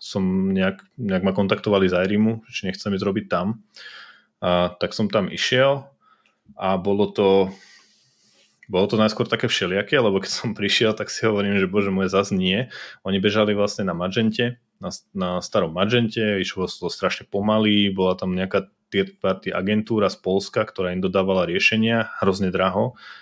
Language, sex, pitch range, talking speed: Slovak, male, 95-105 Hz, 165 wpm